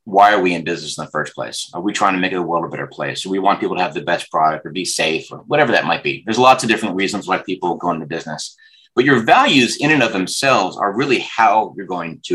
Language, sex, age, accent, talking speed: English, male, 30-49, American, 285 wpm